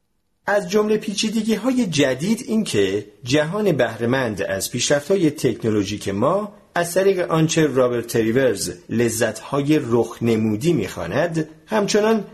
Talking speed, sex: 105 wpm, male